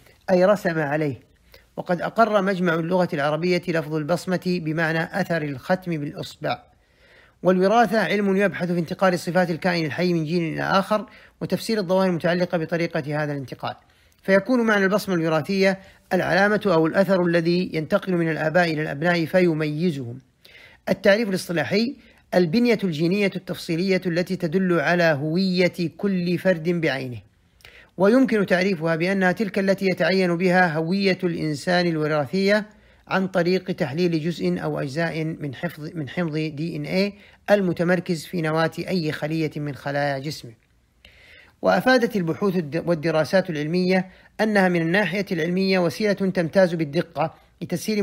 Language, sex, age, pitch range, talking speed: Arabic, male, 50-69, 160-190 Hz, 120 wpm